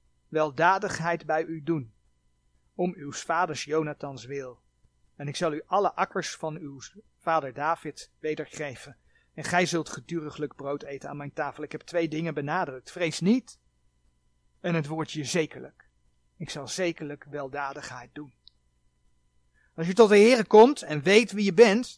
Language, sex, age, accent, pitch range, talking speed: Dutch, male, 40-59, Dutch, 115-190 Hz, 155 wpm